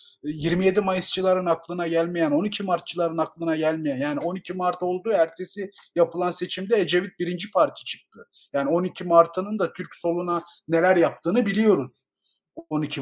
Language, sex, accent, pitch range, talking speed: Turkish, male, native, 150-210 Hz, 135 wpm